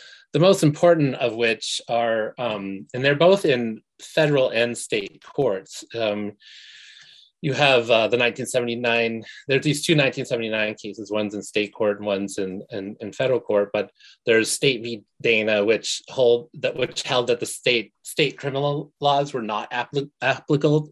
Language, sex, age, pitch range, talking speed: English, male, 30-49, 105-145 Hz, 160 wpm